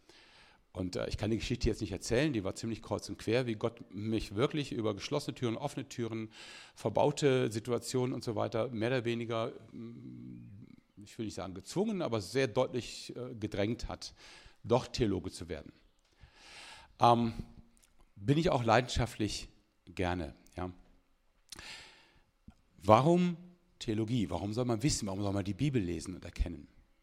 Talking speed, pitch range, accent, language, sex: 145 wpm, 95-125 Hz, German, German, male